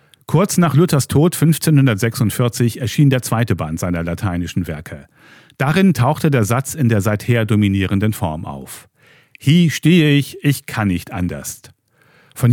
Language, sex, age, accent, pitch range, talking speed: German, male, 40-59, German, 100-140 Hz, 145 wpm